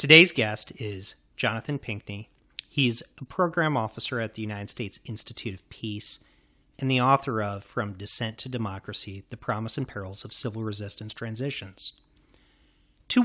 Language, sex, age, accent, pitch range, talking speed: English, male, 40-59, American, 105-140 Hz, 150 wpm